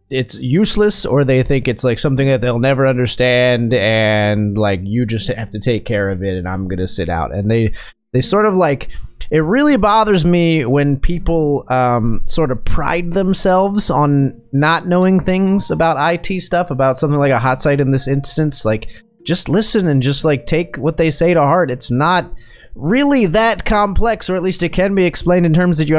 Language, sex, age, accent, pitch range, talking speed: English, male, 30-49, American, 125-170 Hz, 205 wpm